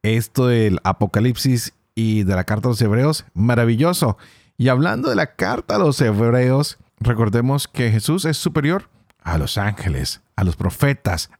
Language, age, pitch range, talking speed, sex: Spanish, 40-59, 100-125 Hz, 160 wpm, male